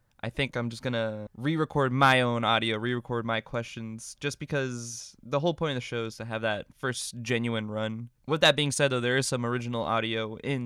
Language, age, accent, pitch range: English, 20-39, American, 115-140 Hz